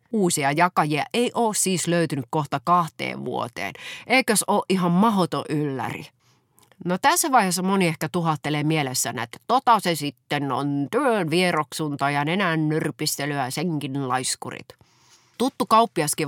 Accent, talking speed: native, 130 wpm